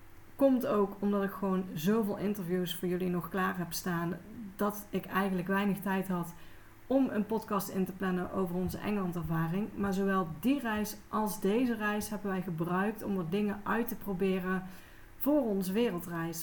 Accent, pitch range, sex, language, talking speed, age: Dutch, 185-220 Hz, female, Dutch, 175 wpm, 30-49